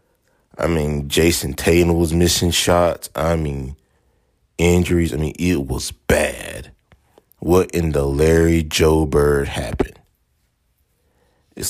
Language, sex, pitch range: English, male, 80-90 Hz